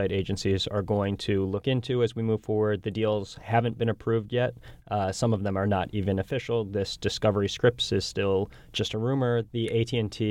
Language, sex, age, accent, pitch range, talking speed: English, male, 20-39, American, 100-115 Hz, 200 wpm